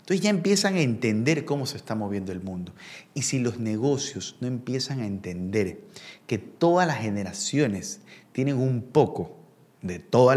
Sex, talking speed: male, 160 wpm